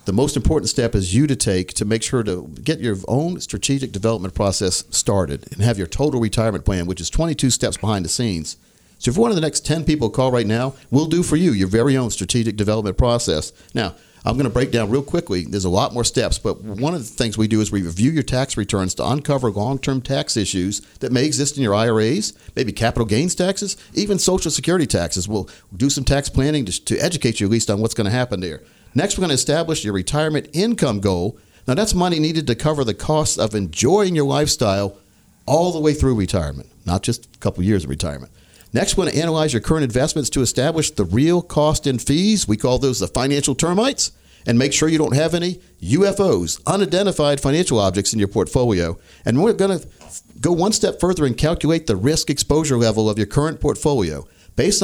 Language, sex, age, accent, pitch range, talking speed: English, male, 50-69, American, 105-150 Hz, 220 wpm